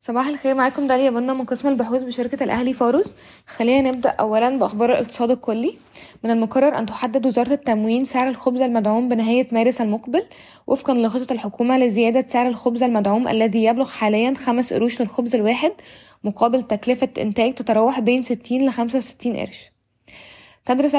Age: 20-39